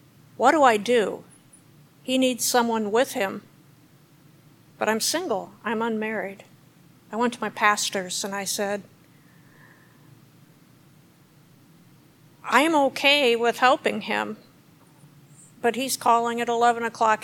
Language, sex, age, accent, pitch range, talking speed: English, female, 50-69, American, 155-230 Hz, 120 wpm